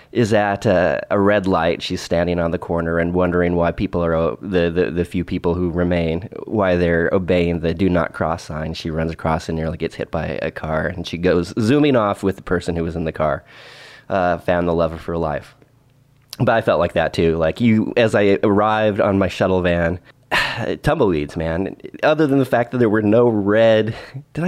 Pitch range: 85-110 Hz